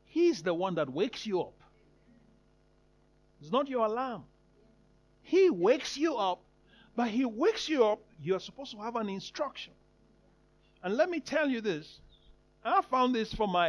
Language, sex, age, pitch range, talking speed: English, male, 50-69, 205-280 Hz, 160 wpm